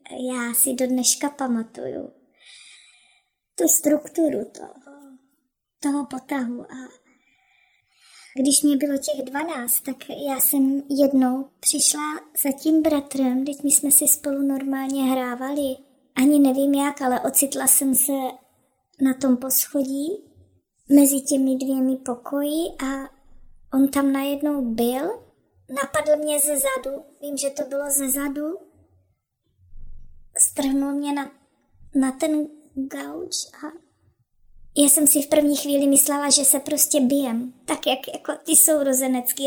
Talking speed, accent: 125 wpm, native